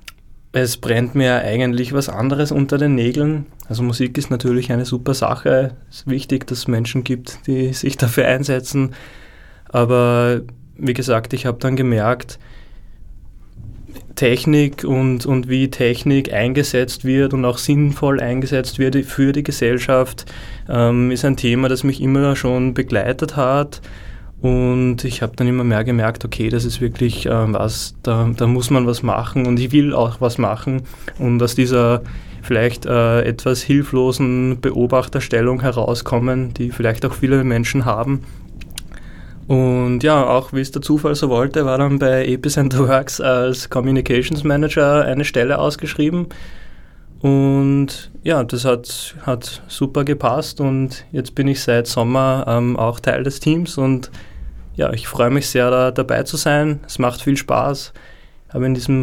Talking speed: 155 wpm